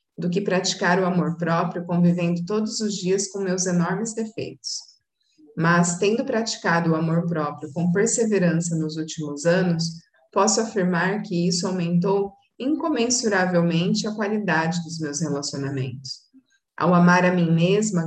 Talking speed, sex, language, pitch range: 135 wpm, female, Portuguese, 170-195 Hz